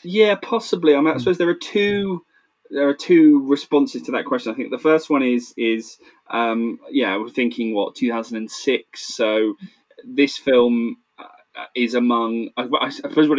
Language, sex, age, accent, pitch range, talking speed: English, male, 20-39, British, 105-165 Hz, 190 wpm